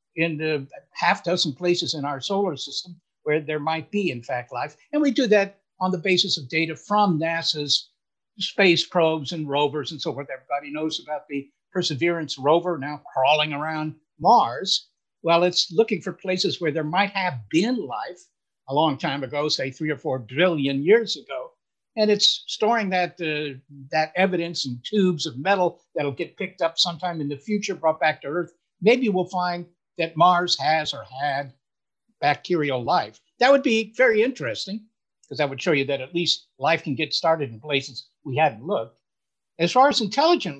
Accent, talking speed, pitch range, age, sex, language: American, 185 wpm, 145-185 Hz, 60-79, male, English